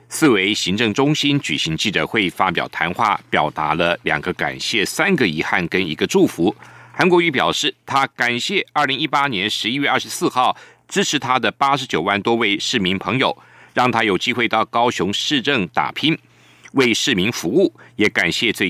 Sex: male